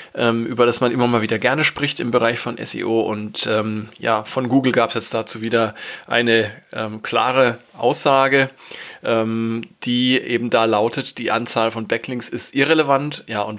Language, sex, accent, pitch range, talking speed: German, male, German, 115-140 Hz, 170 wpm